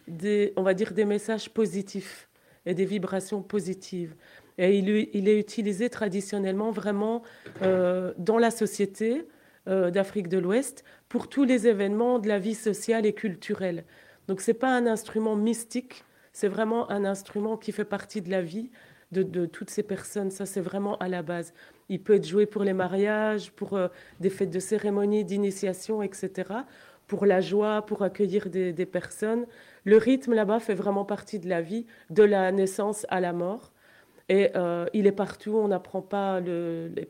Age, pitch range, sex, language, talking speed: 30-49, 185-215 Hz, female, French, 180 wpm